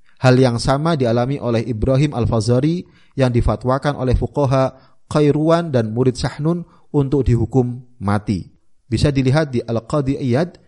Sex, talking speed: male, 125 wpm